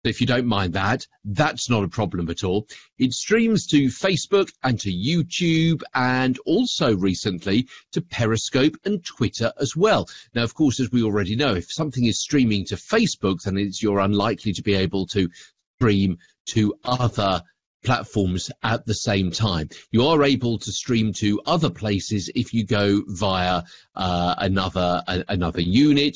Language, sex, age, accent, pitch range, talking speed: English, male, 40-59, British, 95-130 Hz, 165 wpm